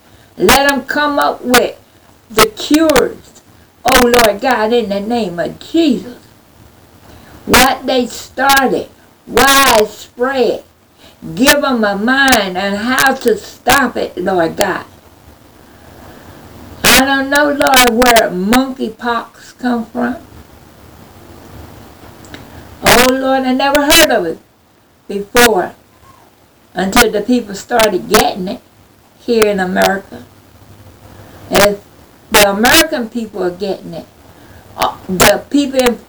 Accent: American